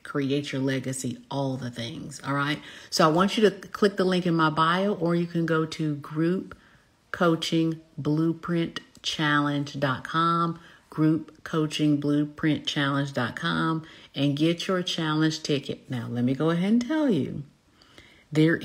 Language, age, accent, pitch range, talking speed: English, 50-69, American, 145-170 Hz, 130 wpm